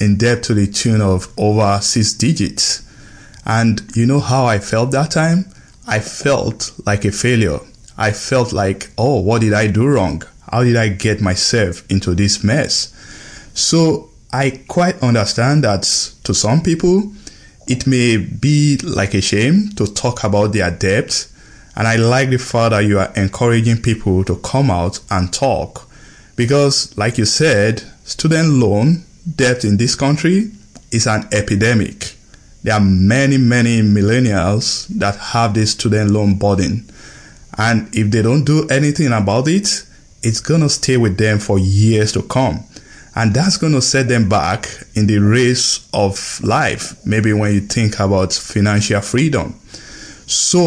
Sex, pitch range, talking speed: male, 105-135 Hz, 160 wpm